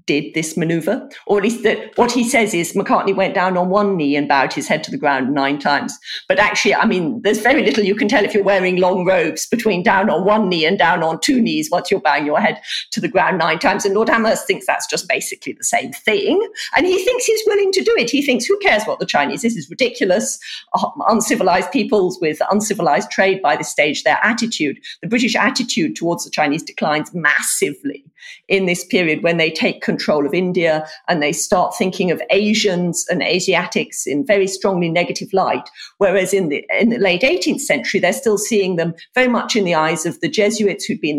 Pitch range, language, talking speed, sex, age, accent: 170-230 Hz, English, 225 wpm, female, 50-69, British